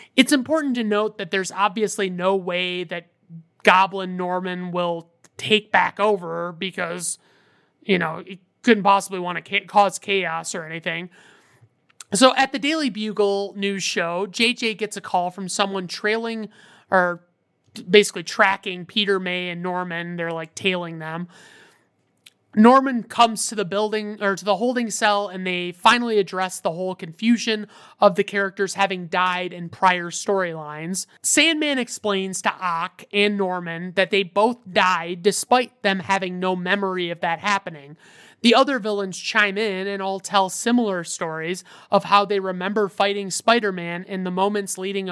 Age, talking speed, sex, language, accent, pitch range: 30-49, 155 wpm, male, English, American, 180-210 Hz